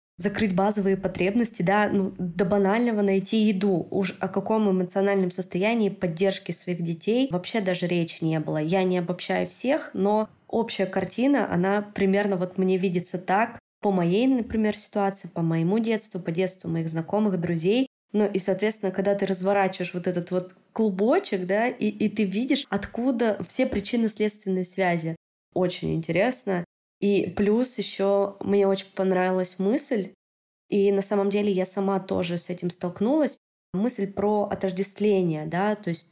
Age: 20-39